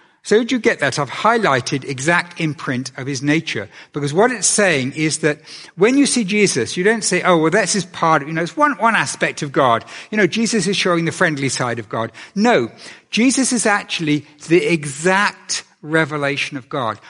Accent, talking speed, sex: British, 205 wpm, male